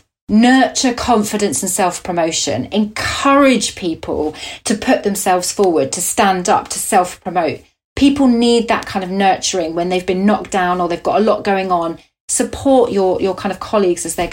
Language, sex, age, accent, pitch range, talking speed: English, female, 30-49, British, 195-255 Hz, 170 wpm